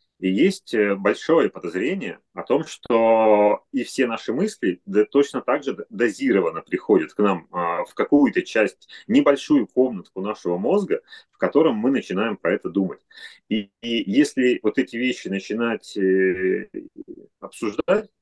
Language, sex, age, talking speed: Russian, male, 30-49, 130 wpm